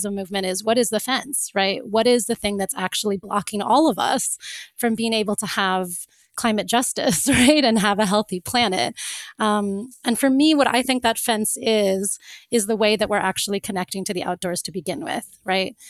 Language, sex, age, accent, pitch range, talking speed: English, female, 30-49, American, 195-235 Hz, 205 wpm